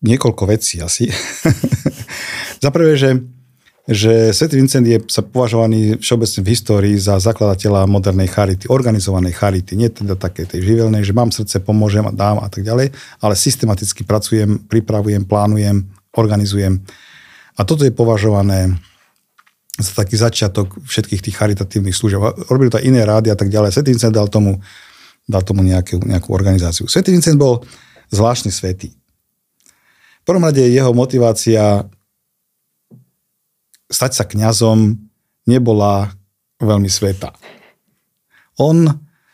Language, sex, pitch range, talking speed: Slovak, male, 100-120 Hz, 130 wpm